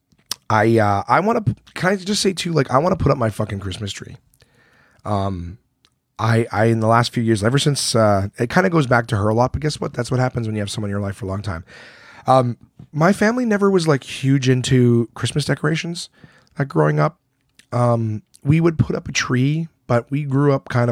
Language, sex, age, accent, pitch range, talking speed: English, male, 30-49, American, 105-130 Hz, 230 wpm